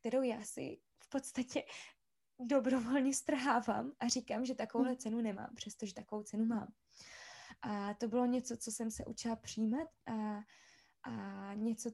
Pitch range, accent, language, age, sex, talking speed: 210-240 Hz, native, Czech, 20-39, female, 145 wpm